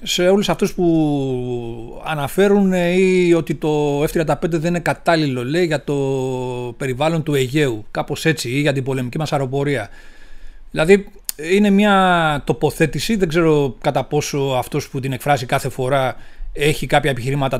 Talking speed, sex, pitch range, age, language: 145 wpm, male, 130-165 Hz, 30-49, Greek